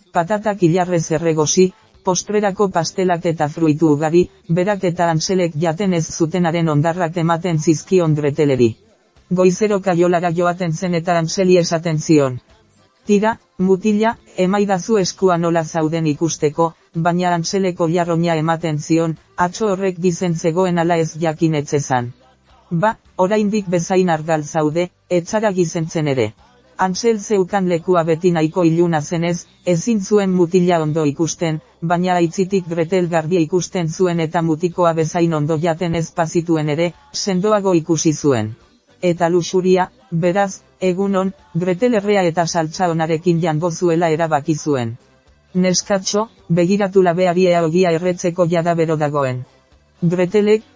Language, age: Spanish, 40-59